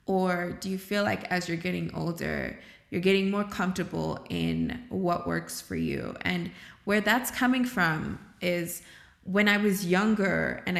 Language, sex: English, female